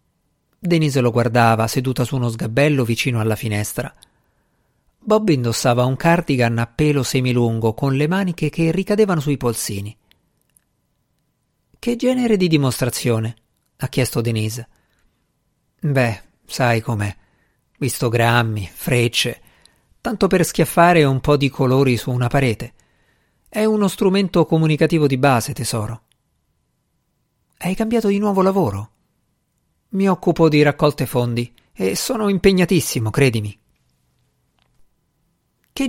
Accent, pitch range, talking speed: native, 115-160 Hz, 115 wpm